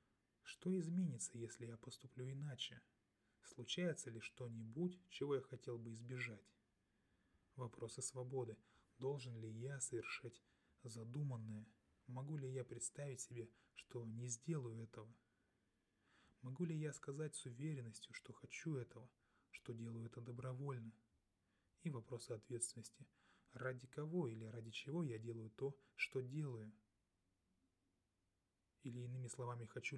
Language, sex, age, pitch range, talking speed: Russian, male, 20-39, 110-130 Hz, 120 wpm